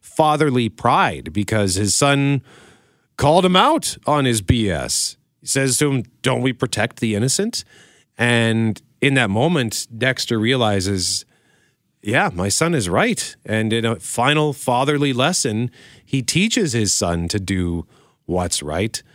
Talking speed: 140 wpm